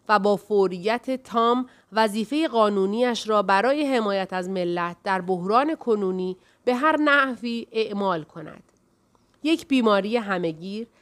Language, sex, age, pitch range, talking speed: Persian, female, 30-49, 190-255 Hz, 120 wpm